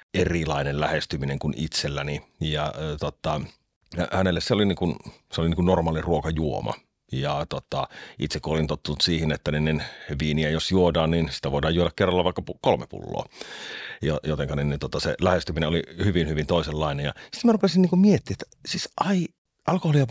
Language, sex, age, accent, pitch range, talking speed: Finnish, male, 40-59, native, 75-95 Hz, 165 wpm